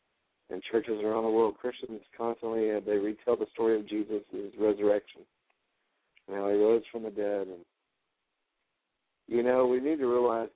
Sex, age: male, 50-69